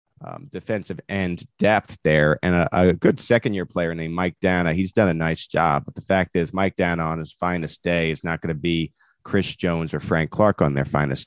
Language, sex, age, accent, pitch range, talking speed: English, male, 30-49, American, 85-100 Hz, 230 wpm